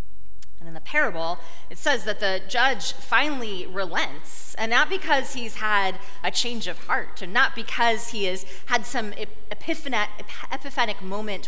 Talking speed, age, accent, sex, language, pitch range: 150 wpm, 30-49, American, female, English, 170-245 Hz